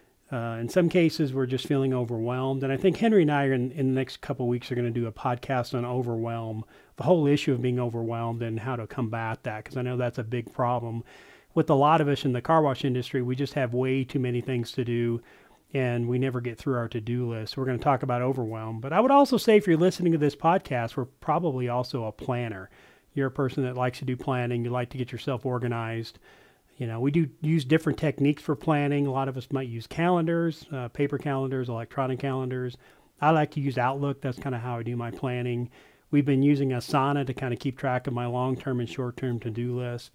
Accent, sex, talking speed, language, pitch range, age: American, male, 240 wpm, English, 120-145 Hz, 40-59